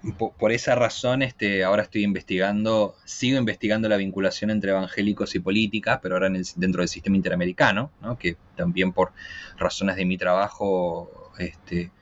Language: Spanish